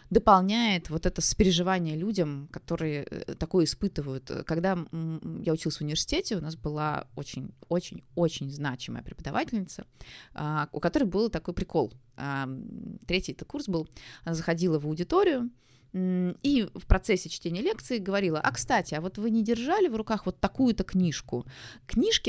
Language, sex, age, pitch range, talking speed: Russian, female, 20-39, 155-195 Hz, 135 wpm